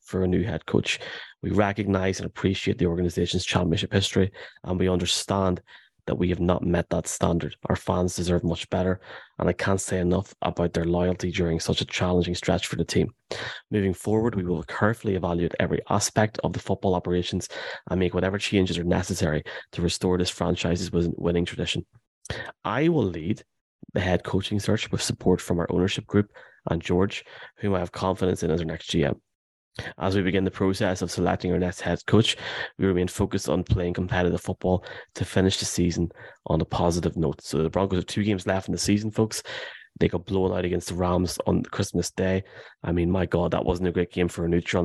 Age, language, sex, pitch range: 30-49, English, male, 85-95 Hz